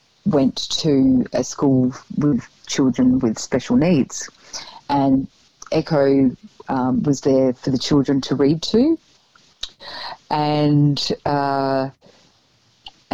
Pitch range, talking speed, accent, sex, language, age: 135-155 Hz, 100 wpm, Australian, female, English, 40-59